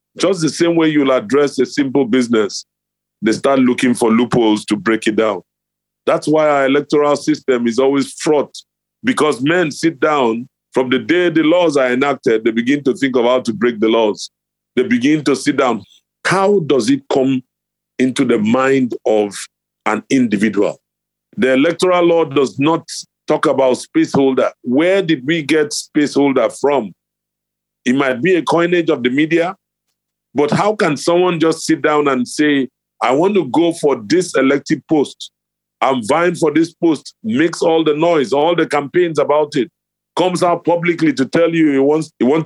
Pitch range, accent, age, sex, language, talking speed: 135-175 Hz, Nigerian, 40-59, male, English, 175 wpm